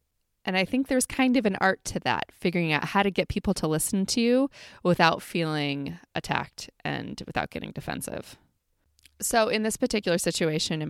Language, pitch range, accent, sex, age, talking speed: English, 160-205 Hz, American, female, 20-39, 180 wpm